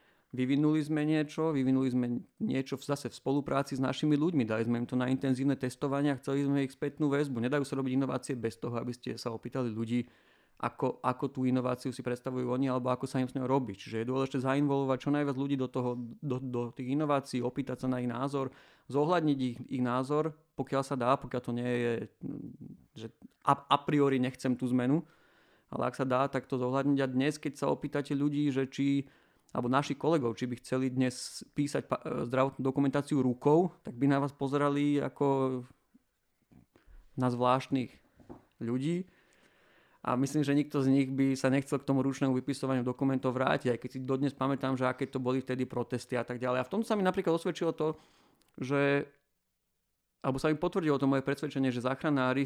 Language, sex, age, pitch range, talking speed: Slovak, male, 40-59, 125-140 Hz, 190 wpm